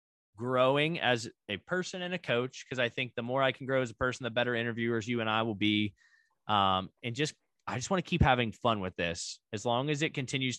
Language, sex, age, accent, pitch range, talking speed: English, male, 20-39, American, 115-145 Hz, 245 wpm